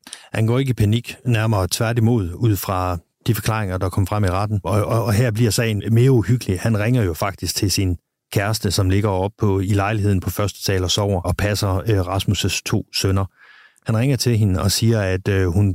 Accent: native